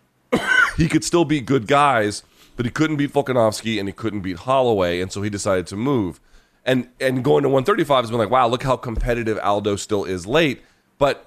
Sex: male